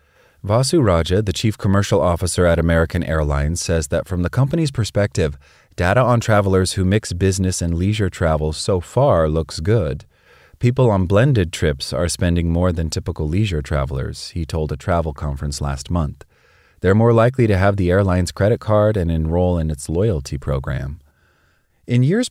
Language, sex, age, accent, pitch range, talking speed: English, male, 30-49, American, 85-105 Hz, 170 wpm